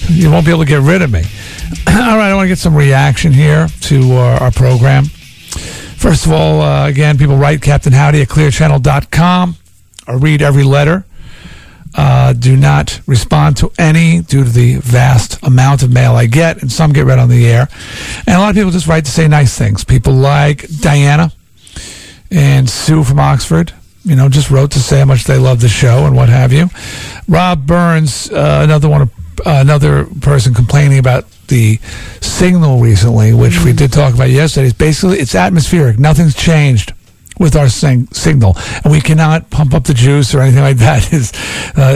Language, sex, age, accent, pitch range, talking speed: English, male, 50-69, American, 120-155 Hz, 190 wpm